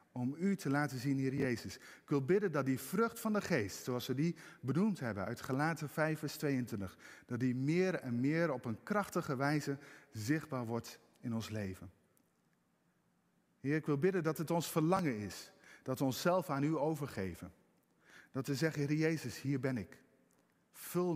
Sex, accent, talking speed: male, Dutch, 180 wpm